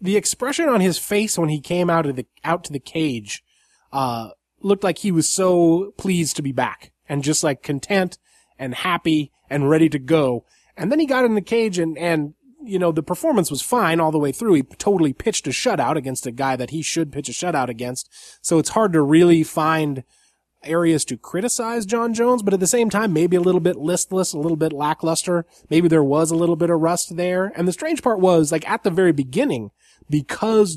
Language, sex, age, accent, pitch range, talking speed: English, male, 20-39, American, 140-185 Hz, 220 wpm